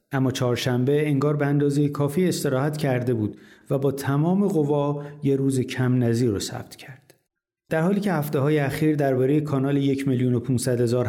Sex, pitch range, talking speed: male, 125-155 Hz, 170 wpm